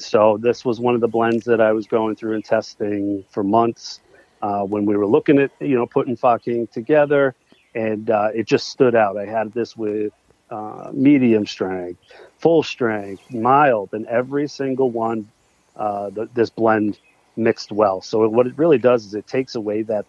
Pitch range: 110-125 Hz